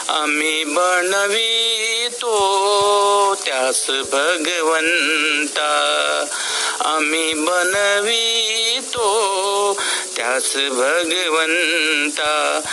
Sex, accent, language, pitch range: male, native, Marathi, 155-225 Hz